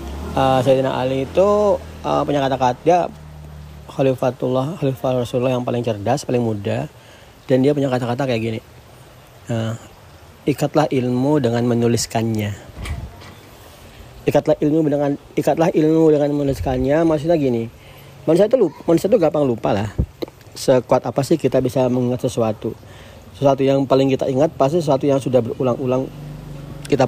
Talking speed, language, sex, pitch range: 135 wpm, Indonesian, male, 115-145 Hz